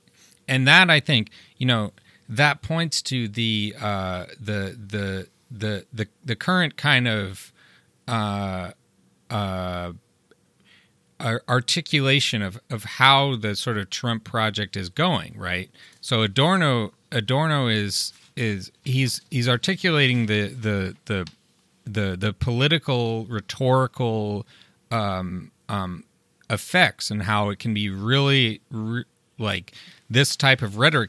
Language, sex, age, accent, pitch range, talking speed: English, male, 30-49, American, 100-135 Hz, 120 wpm